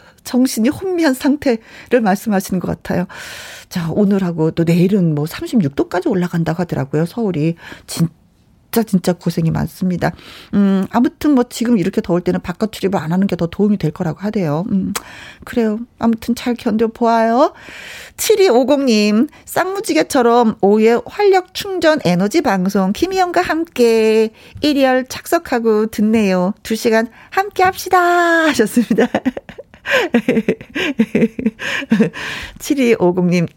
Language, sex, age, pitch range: Korean, female, 40-59, 190-290 Hz